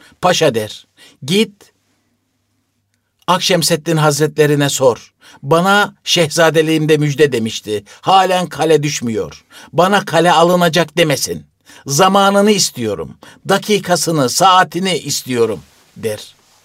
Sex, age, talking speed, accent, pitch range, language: male, 60-79, 85 wpm, native, 125-165 Hz, Turkish